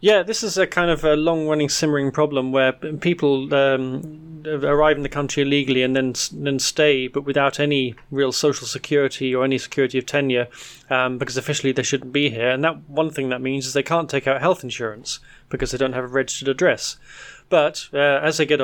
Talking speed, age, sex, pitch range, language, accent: 210 wpm, 30-49, male, 130-145 Hz, English, British